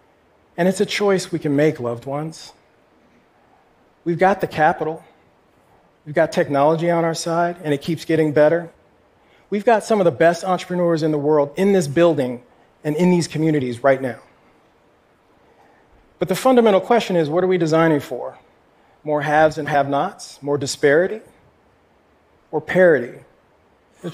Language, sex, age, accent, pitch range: Korean, male, 40-59, American, 135-170 Hz